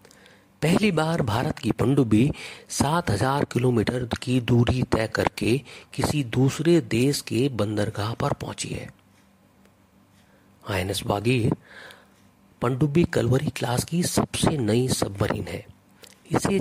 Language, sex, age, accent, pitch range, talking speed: Hindi, male, 40-59, native, 110-145 Hz, 115 wpm